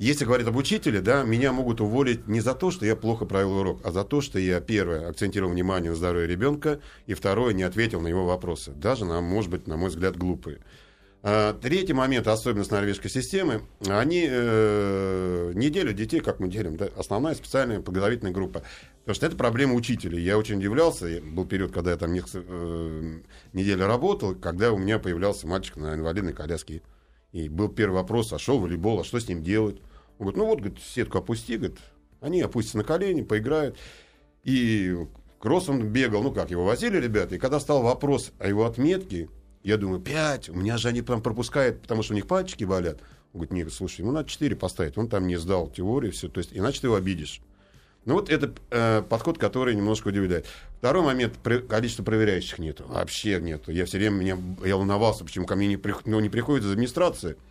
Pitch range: 90-120 Hz